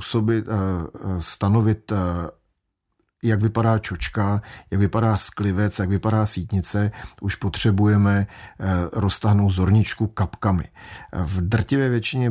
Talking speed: 90 wpm